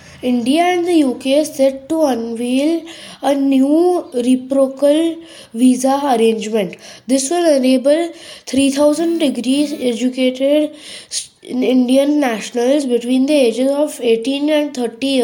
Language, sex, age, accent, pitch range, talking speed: English, female, 20-39, Indian, 235-285 Hz, 110 wpm